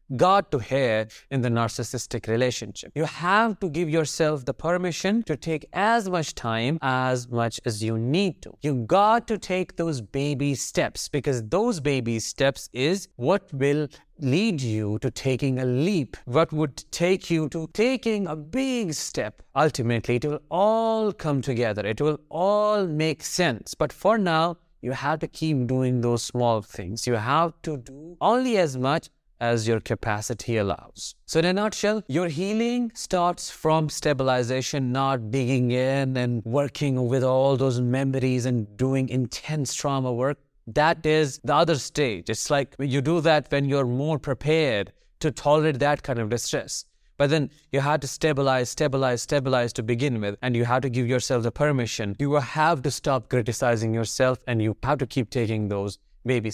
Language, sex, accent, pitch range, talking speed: English, male, Indian, 125-160 Hz, 175 wpm